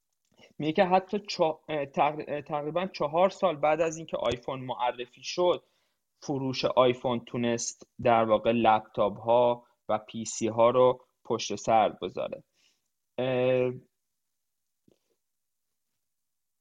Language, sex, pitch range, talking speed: Persian, male, 130-185 Hz, 100 wpm